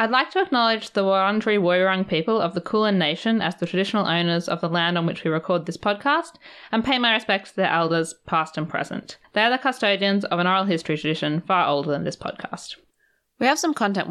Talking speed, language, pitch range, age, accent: 225 wpm, English, 165-225 Hz, 20-39, Australian